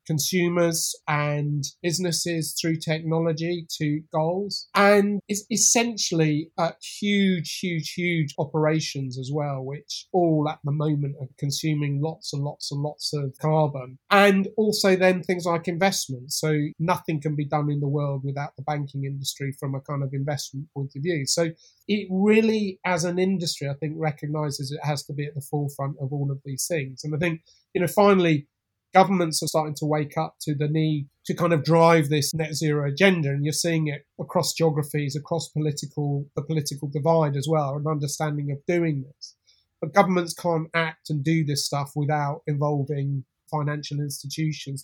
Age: 30-49